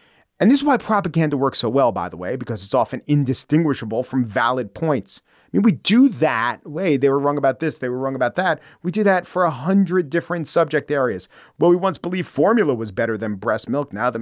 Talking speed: 230 wpm